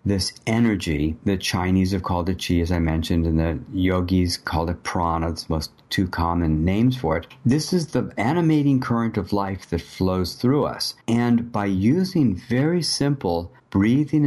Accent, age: American, 50-69